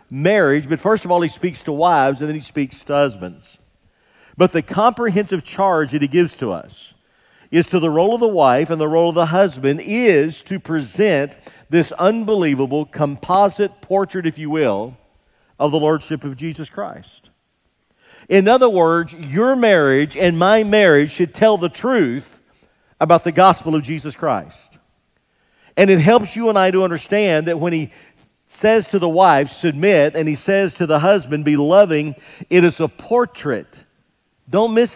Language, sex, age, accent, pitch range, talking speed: English, male, 50-69, American, 150-195 Hz, 175 wpm